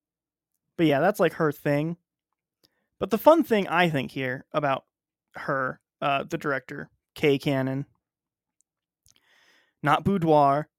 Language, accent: English, American